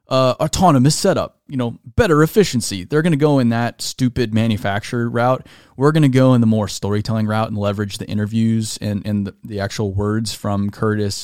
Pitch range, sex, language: 105-130 Hz, male, English